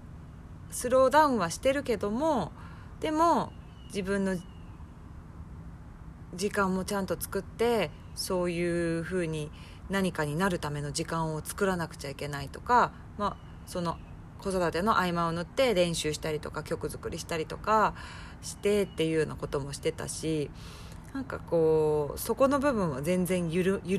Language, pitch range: Japanese, 155-205 Hz